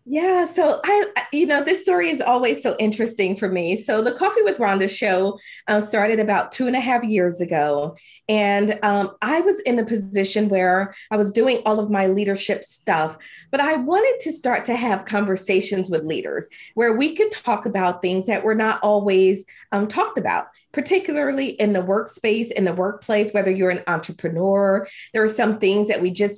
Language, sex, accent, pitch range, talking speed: English, female, American, 190-245 Hz, 195 wpm